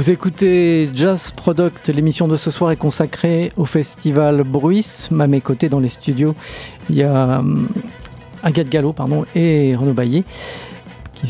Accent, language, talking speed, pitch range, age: French, French, 155 wpm, 145-180 Hz, 50-69